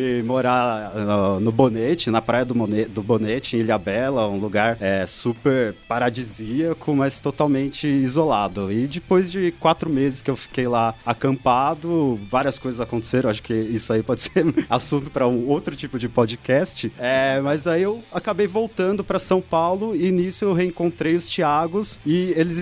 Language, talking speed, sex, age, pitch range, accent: Portuguese, 165 wpm, male, 30-49, 120-160 Hz, Brazilian